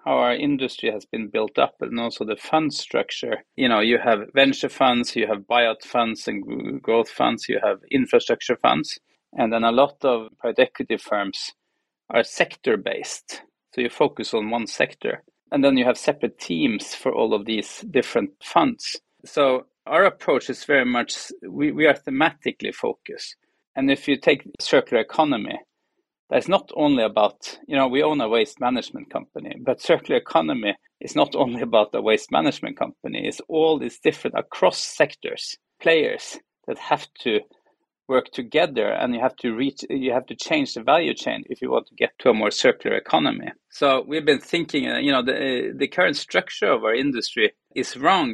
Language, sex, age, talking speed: English, male, 40-59, 180 wpm